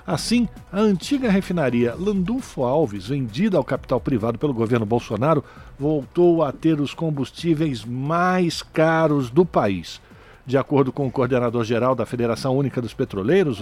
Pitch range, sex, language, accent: 125-175 Hz, male, Portuguese, Brazilian